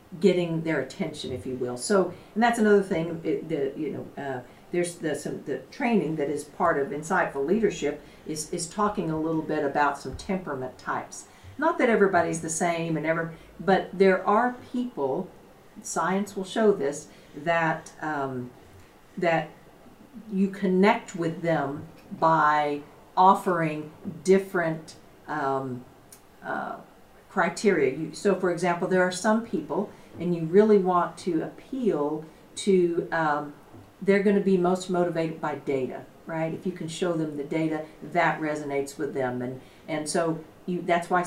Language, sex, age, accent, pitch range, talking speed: English, female, 50-69, American, 155-195 Hz, 155 wpm